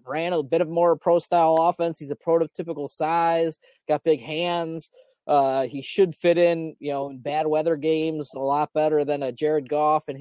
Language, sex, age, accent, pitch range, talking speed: English, male, 20-39, American, 155-205 Hz, 195 wpm